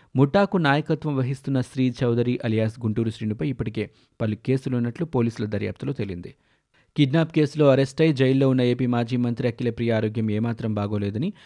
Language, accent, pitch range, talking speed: Telugu, native, 110-140 Hz, 135 wpm